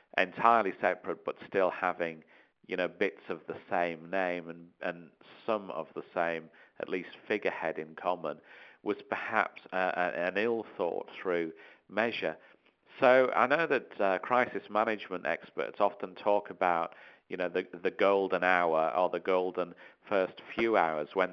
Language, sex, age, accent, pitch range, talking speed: English, male, 50-69, British, 85-105 Hz, 150 wpm